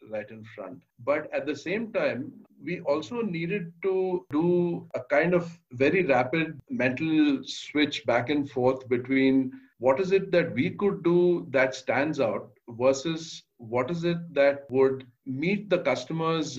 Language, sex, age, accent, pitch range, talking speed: English, male, 50-69, Indian, 125-165 Hz, 155 wpm